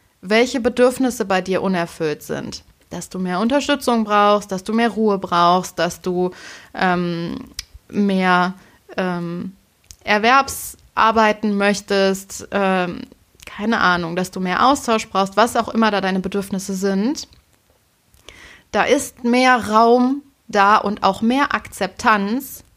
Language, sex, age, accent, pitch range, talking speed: German, female, 20-39, German, 185-235 Hz, 125 wpm